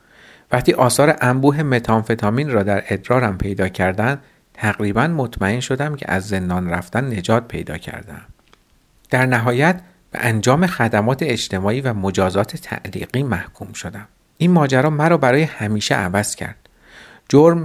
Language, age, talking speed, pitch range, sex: Persian, 50-69, 130 wpm, 105-135 Hz, male